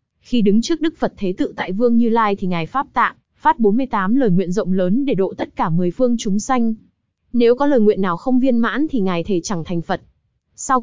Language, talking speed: Vietnamese, 245 wpm